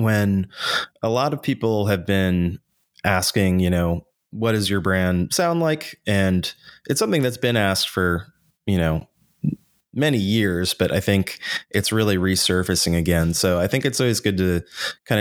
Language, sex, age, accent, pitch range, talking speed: English, male, 20-39, American, 90-110 Hz, 165 wpm